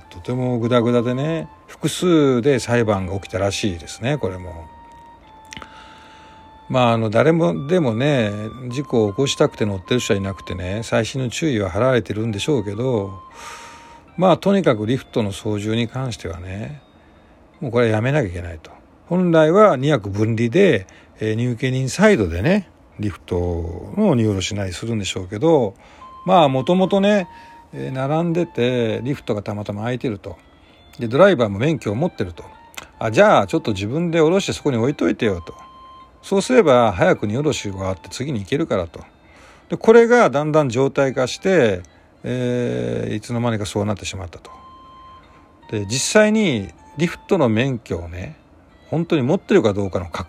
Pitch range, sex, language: 100-155 Hz, male, Japanese